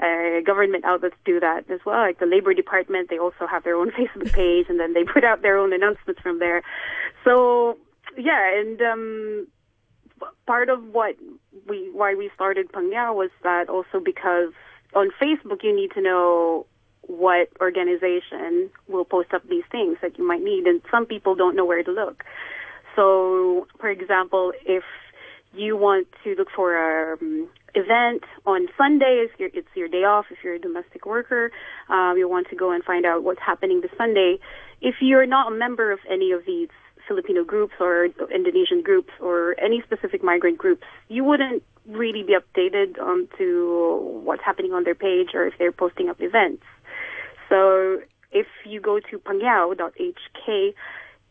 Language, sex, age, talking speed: English, female, 20-39, 175 wpm